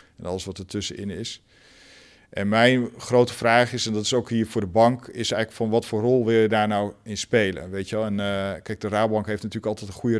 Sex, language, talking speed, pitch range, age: male, Dutch, 260 wpm, 105-115 Hz, 50-69